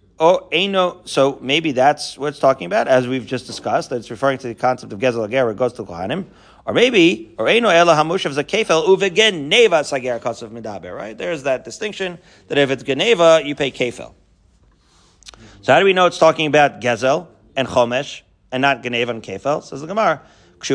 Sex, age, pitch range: male, 40-59, 125-175 Hz